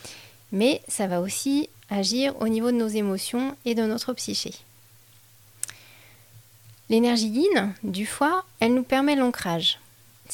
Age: 30-49